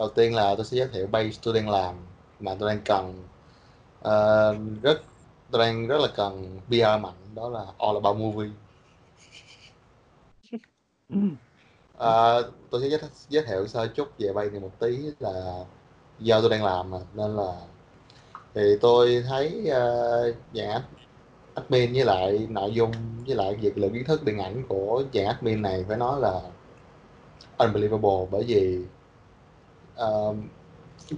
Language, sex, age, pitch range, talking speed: Vietnamese, male, 20-39, 95-120 Hz, 150 wpm